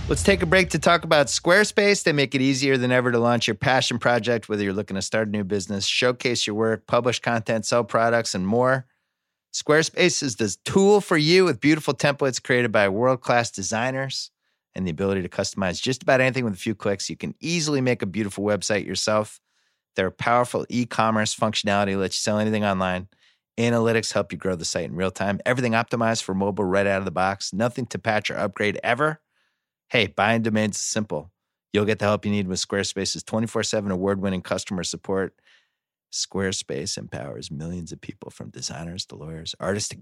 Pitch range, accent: 95-130 Hz, American